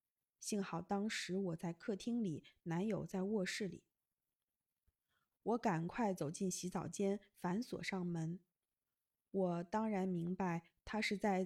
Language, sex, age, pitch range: Chinese, female, 20-39, 180-215 Hz